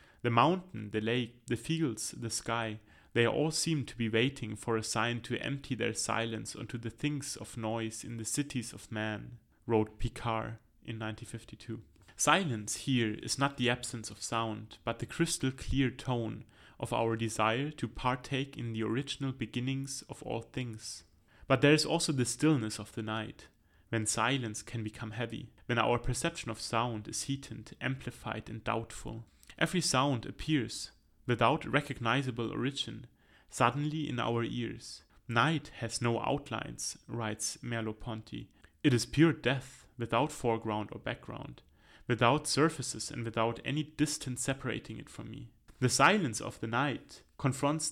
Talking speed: 155 wpm